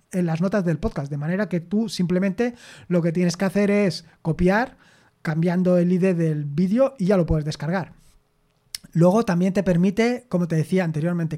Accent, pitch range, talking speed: Spanish, 165-215 Hz, 185 wpm